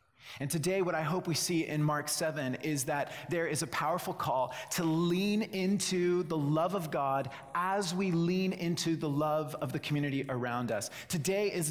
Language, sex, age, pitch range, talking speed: English, male, 30-49, 130-170 Hz, 190 wpm